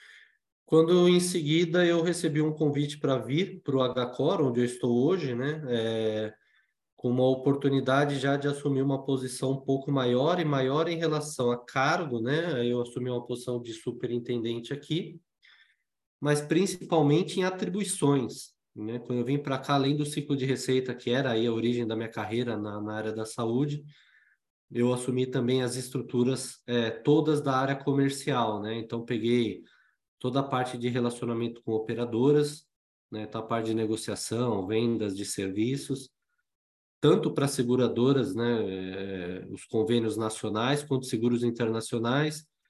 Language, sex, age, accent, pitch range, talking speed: Portuguese, male, 20-39, Brazilian, 120-150 Hz, 155 wpm